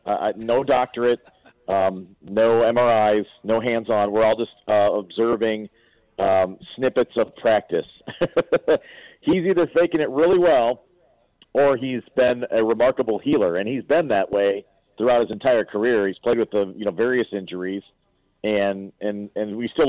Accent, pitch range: American, 105-130 Hz